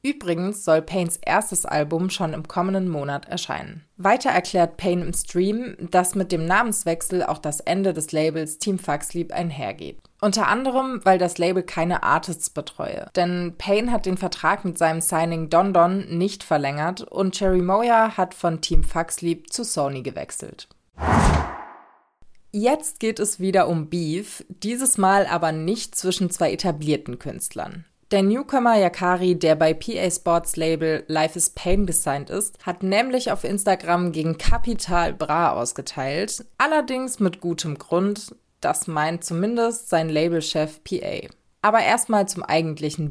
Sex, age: female, 20-39